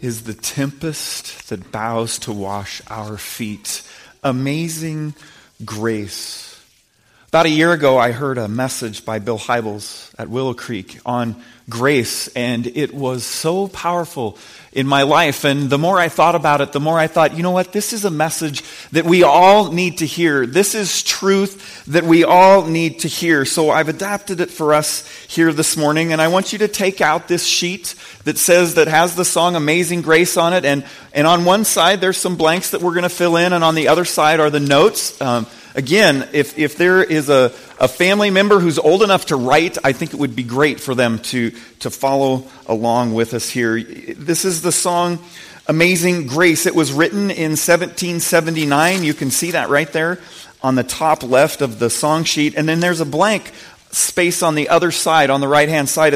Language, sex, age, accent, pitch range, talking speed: English, male, 40-59, American, 130-175 Hz, 200 wpm